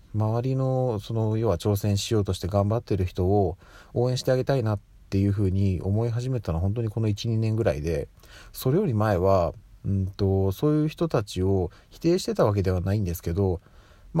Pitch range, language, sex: 90-115 Hz, Japanese, male